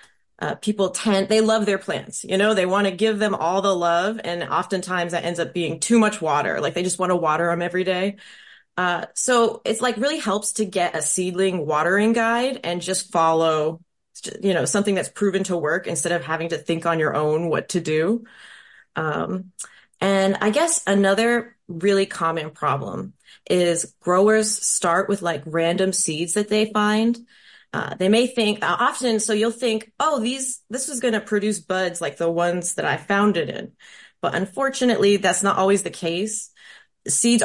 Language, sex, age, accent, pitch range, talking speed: English, female, 20-39, American, 175-215 Hz, 190 wpm